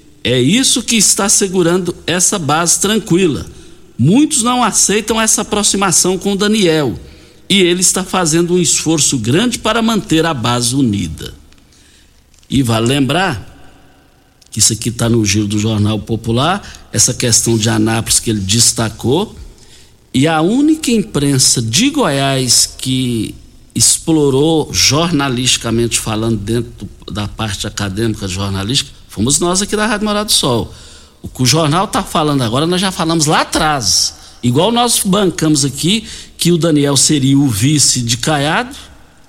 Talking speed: 140 wpm